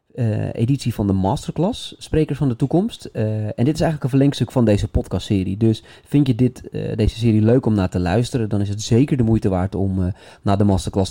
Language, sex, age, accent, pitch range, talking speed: Dutch, male, 30-49, Dutch, 100-120 Hz, 225 wpm